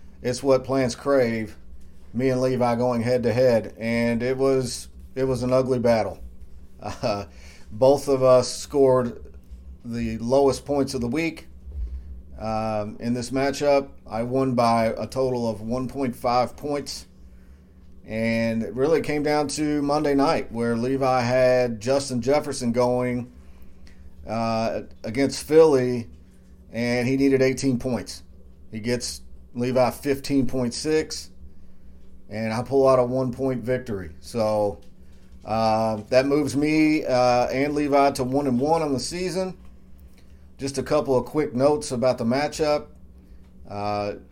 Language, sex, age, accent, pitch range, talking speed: English, male, 40-59, American, 95-130 Hz, 135 wpm